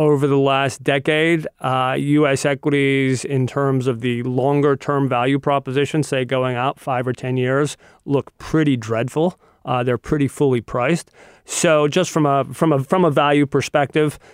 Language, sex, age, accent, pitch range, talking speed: English, male, 30-49, American, 130-155 Hz, 155 wpm